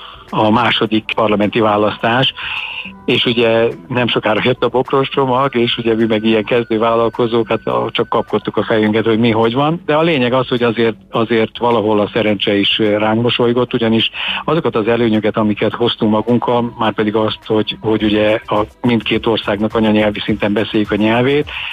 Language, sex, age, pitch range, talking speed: Hungarian, male, 50-69, 110-125 Hz, 165 wpm